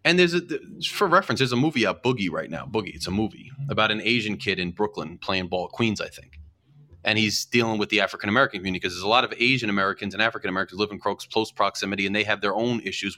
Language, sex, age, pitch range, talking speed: English, male, 30-49, 105-145 Hz, 245 wpm